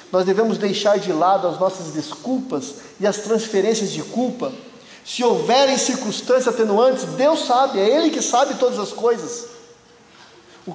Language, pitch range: Portuguese, 165-225 Hz